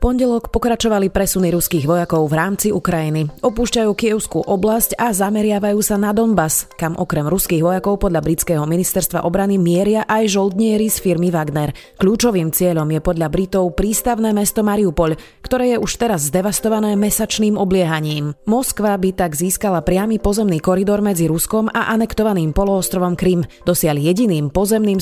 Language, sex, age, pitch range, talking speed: Slovak, female, 30-49, 170-210 Hz, 145 wpm